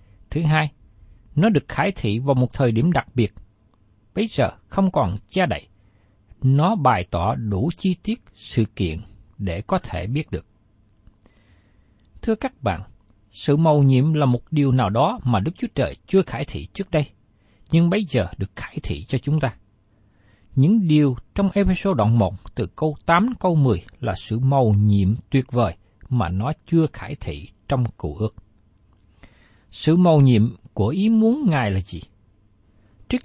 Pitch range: 100-160 Hz